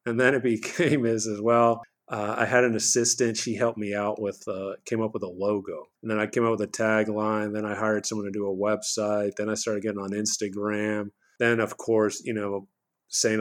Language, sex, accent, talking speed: English, male, American, 230 wpm